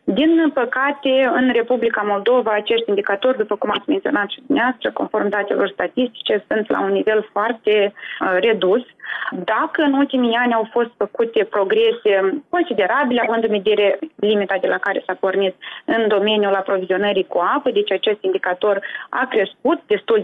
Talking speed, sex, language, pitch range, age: 150 wpm, female, Romanian, 200-265 Hz, 20-39